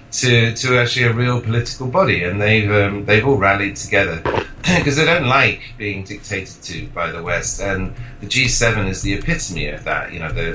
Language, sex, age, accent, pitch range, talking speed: English, male, 40-59, British, 95-120 Hz, 200 wpm